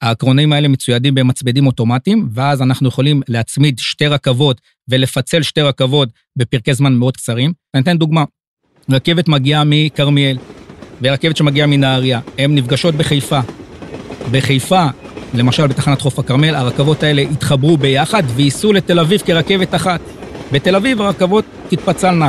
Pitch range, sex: 130-165 Hz, male